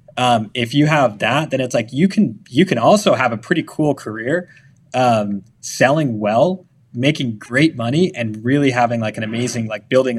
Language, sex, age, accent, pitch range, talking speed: English, male, 20-39, American, 115-140 Hz, 190 wpm